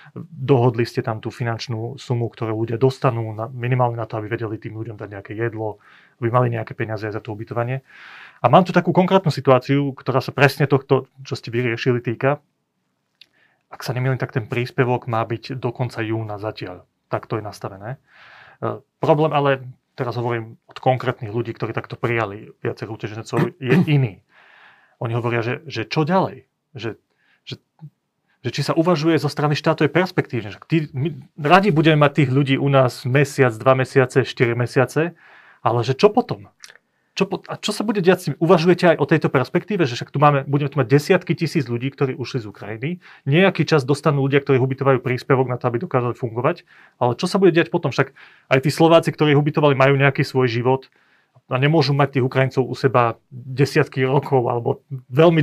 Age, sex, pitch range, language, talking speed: 30-49, male, 120-150 Hz, Slovak, 190 wpm